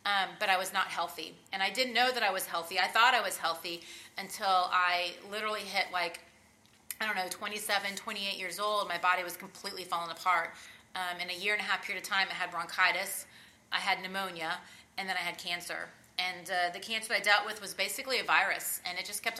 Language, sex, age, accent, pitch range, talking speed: English, female, 30-49, American, 180-210 Hz, 225 wpm